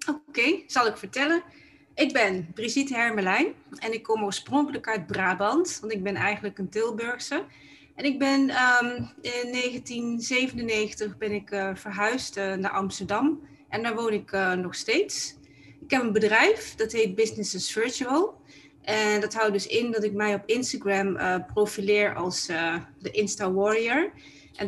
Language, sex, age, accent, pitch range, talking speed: Dutch, female, 30-49, Dutch, 195-230 Hz, 155 wpm